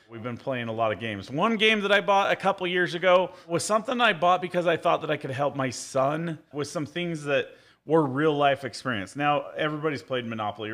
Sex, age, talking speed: male, 30-49, 235 wpm